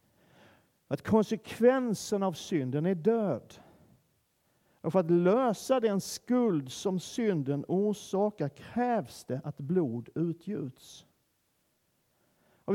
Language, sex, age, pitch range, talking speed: Swedish, male, 50-69, 140-185 Hz, 100 wpm